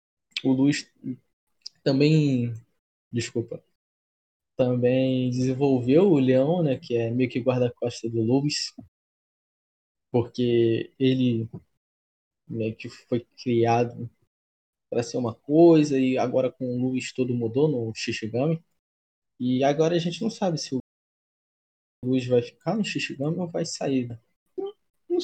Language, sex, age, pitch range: Portuguese, male, 20-39, 115-155 Hz